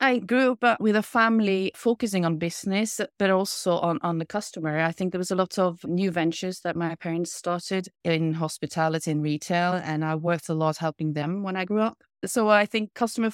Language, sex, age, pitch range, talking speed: English, female, 30-49, 165-200 Hz, 210 wpm